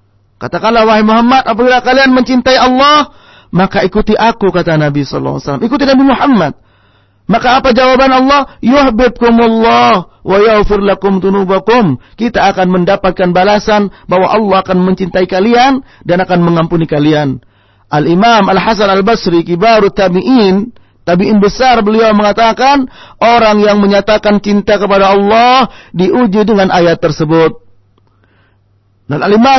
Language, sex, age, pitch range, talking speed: English, male, 40-59, 175-240 Hz, 115 wpm